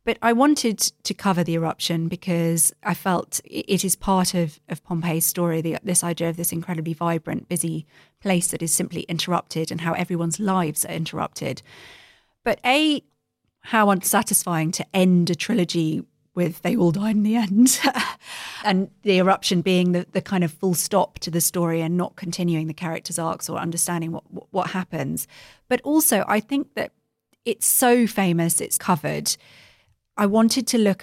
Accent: British